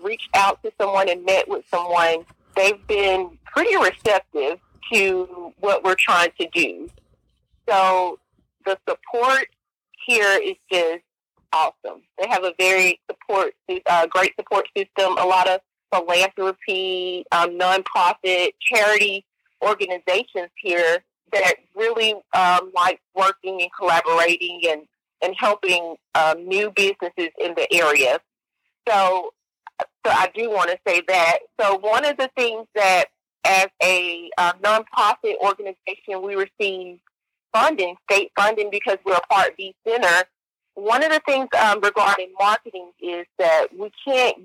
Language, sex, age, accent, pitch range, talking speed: English, female, 40-59, American, 180-215 Hz, 135 wpm